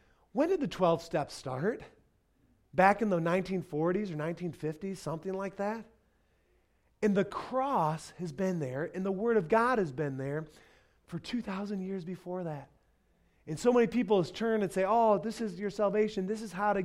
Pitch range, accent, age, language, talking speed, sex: 130-185 Hz, American, 30-49, English, 180 wpm, male